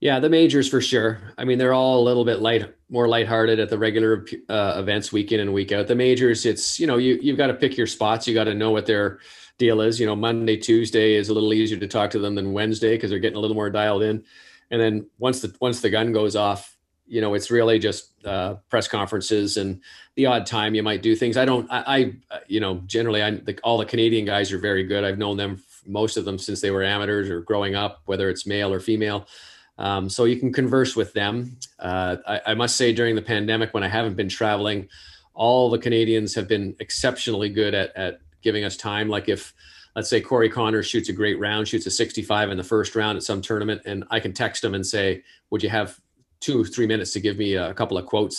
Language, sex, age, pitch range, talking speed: English, male, 40-59, 100-115 Hz, 250 wpm